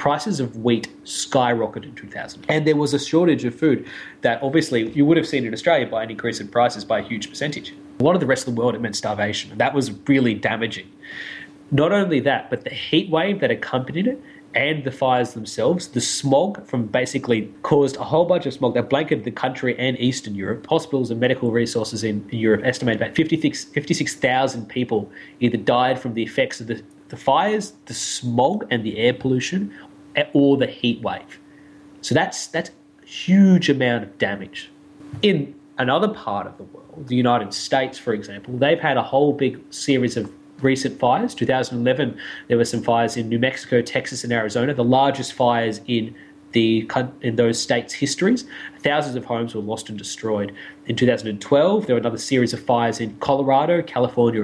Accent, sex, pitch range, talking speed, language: Australian, male, 115-145 Hz, 190 wpm, English